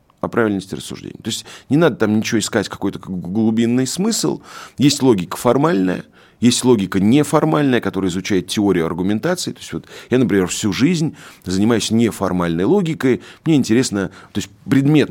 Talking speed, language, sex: 150 wpm, Russian, male